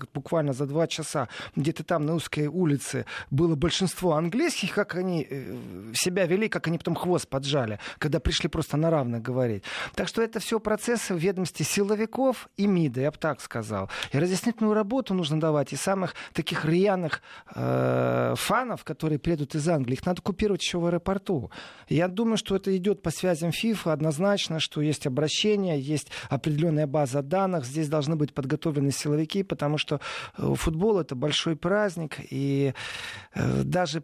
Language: Russian